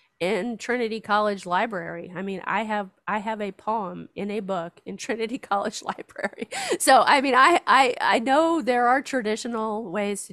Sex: female